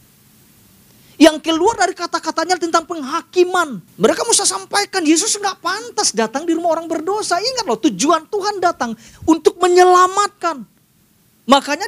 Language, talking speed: Indonesian, 125 wpm